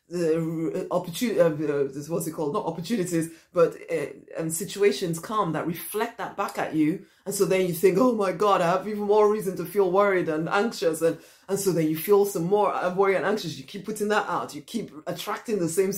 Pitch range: 155-195 Hz